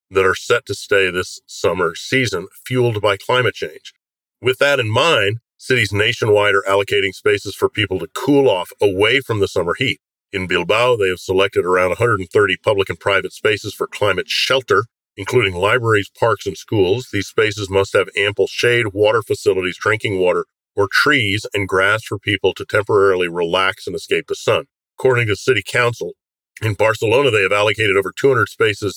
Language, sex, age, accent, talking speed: English, male, 50-69, American, 175 wpm